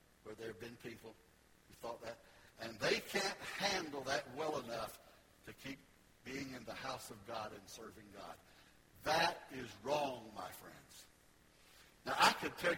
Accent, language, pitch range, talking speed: American, English, 120-170 Hz, 165 wpm